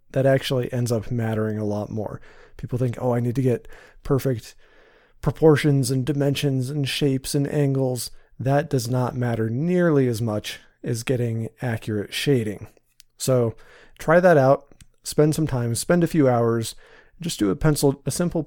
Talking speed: 165 wpm